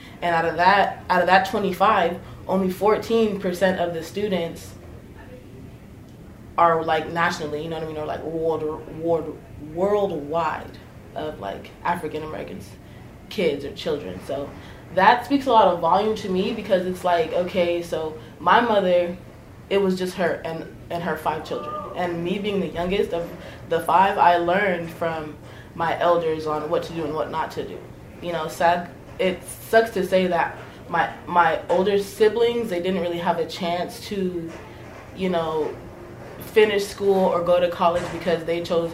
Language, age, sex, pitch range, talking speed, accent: English, 20-39, female, 165-195 Hz, 175 wpm, American